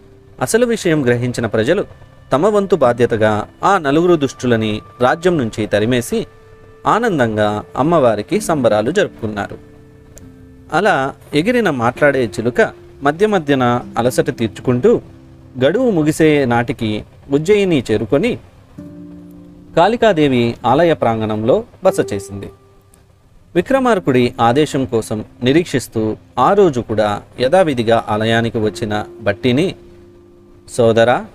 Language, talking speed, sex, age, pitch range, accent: Telugu, 90 wpm, male, 40-59, 105-145 Hz, native